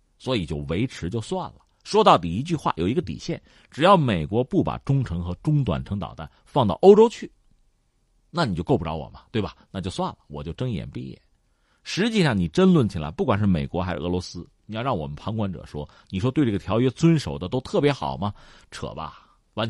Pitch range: 85-145 Hz